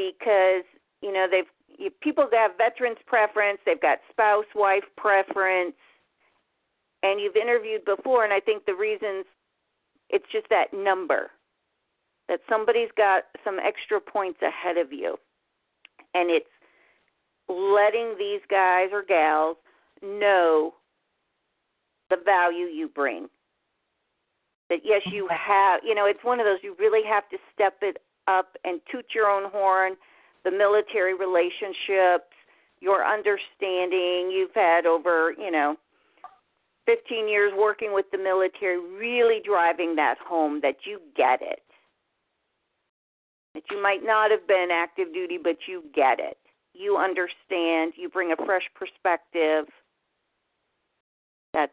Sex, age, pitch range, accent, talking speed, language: female, 50-69, 180-220 Hz, American, 130 wpm, English